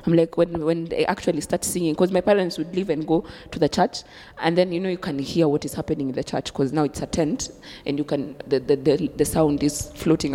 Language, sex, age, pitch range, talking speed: English, female, 20-39, 150-180 Hz, 265 wpm